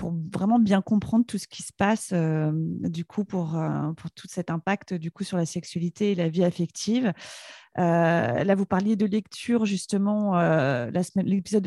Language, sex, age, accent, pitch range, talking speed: French, female, 30-49, French, 170-200 Hz, 195 wpm